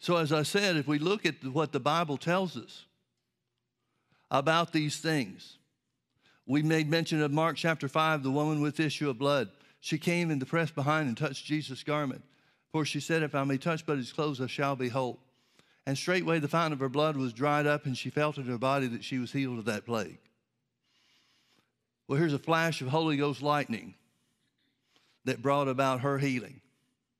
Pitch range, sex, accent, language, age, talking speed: 135-160 Hz, male, American, English, 60-79, 200 wpm